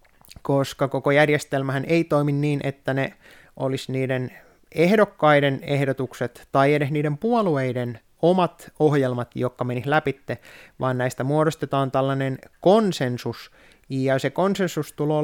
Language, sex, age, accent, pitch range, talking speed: Finnish, male, 20-39, native, 130-160 Hz, 120 wpm